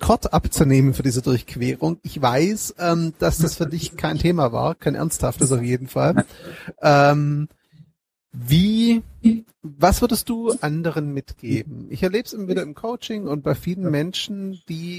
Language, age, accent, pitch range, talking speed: German, 30-49, German, 145-180 Hz, 145 wpm